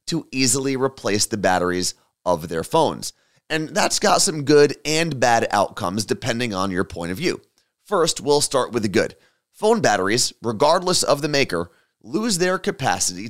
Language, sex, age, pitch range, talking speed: English, male, 30-49, 105-165 Hz, 165 wpm